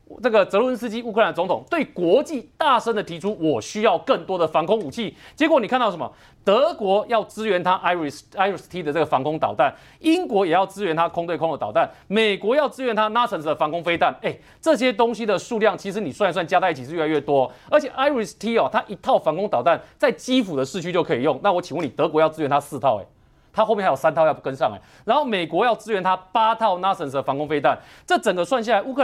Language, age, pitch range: Chinese, 30-49, 165-235 Hz